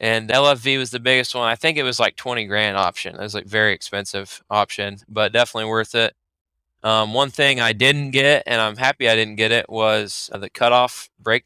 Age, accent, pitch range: 20-39, American, 105-120 Hz